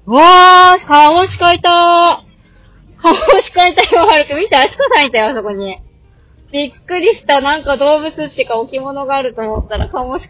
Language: Japanese